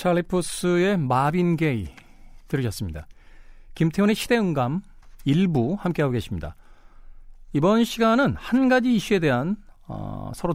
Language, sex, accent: Korean, male, native